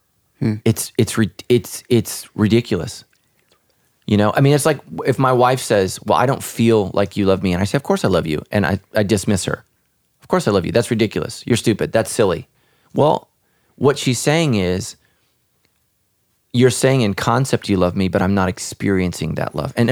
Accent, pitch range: American, 110-145 Hz